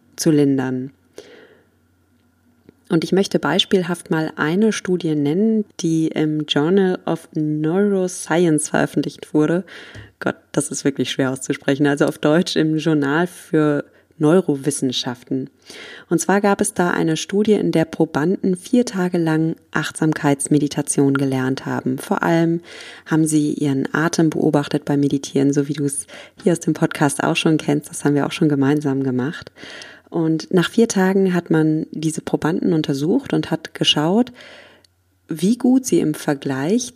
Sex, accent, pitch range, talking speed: female, German, 145-180 Hz, 145 wpm